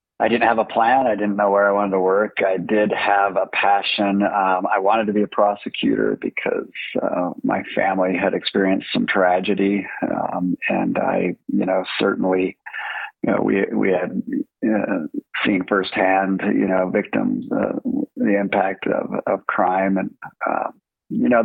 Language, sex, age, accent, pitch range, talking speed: English, male, 50-69, American, 95-105 Hz, 170 wpm